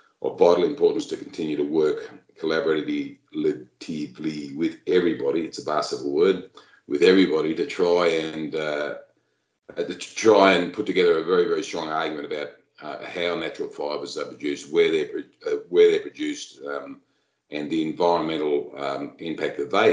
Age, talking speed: 50-69, 160 wpm